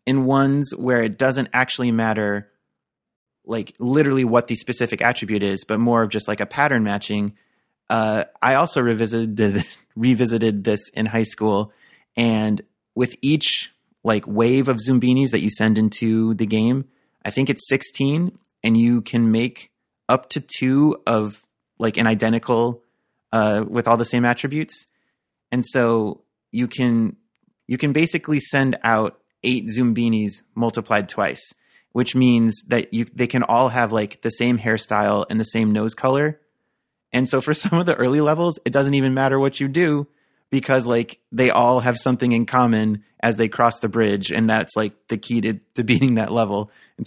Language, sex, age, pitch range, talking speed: English, male, 30-49, 110-130 Hz, 170 wpm